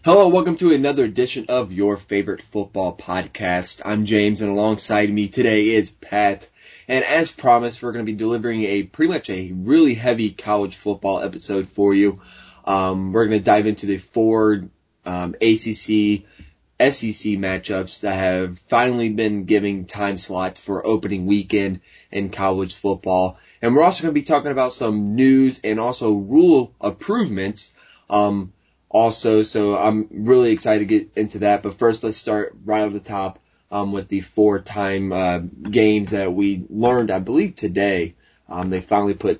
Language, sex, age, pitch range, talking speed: English, male, 20-39, 95-110 Hz, 170 wpm